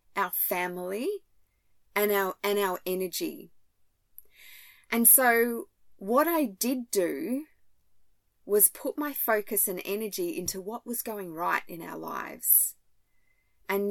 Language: English